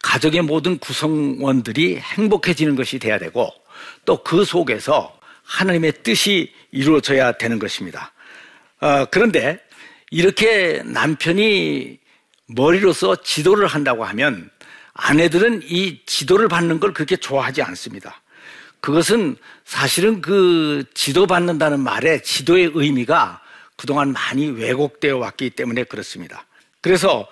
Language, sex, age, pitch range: Korean, male, 60-79, 140-185 Hz